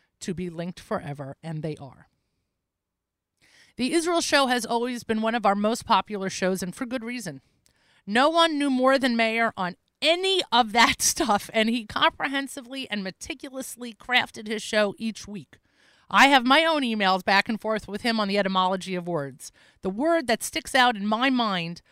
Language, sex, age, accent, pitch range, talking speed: English, female, 40-59, American, 185-245 Hz, 185 wpm